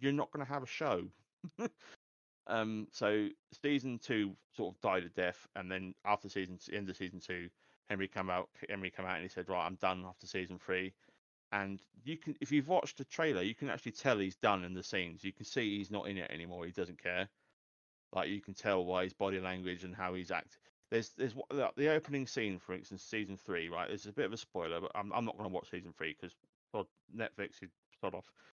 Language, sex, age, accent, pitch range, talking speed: English, male, 30-49, British, 90-110 Hz, 230 wpm